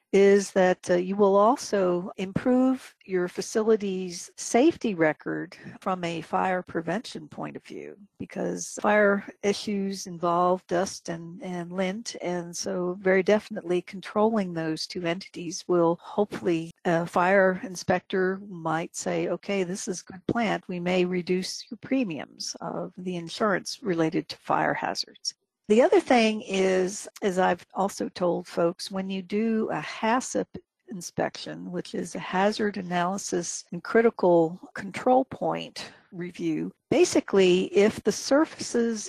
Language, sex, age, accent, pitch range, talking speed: English, female, 60-79, American, 175-210 Hz, 135 wpm